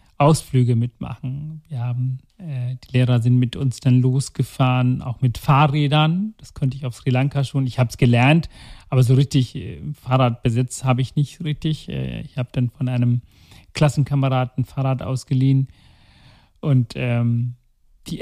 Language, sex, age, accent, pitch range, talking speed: German, male, 40-59, German, 120-145 Hz, 155 wpm